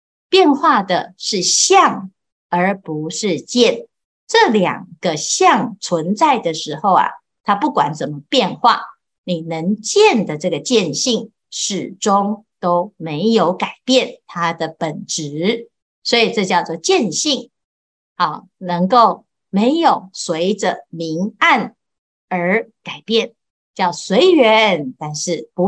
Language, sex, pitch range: Chinese, female, 180-255 Hz